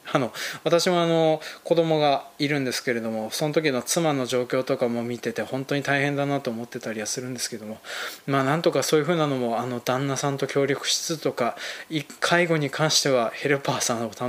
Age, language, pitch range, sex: 20-39, Japanese, 130-175 Hz, male